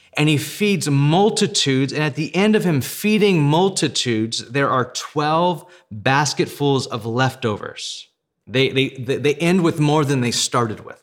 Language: English